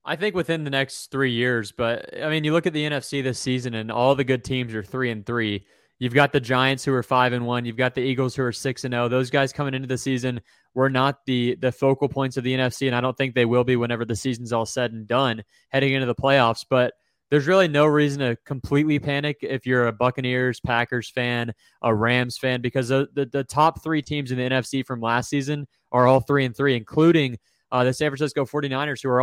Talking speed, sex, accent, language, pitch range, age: 245 wpm, male, American, English, 120-140 Hz, 20-39